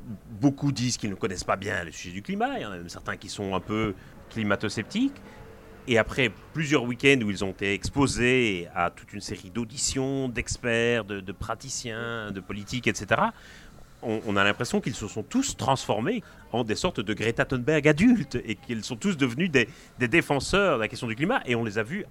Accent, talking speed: French, 210 wpm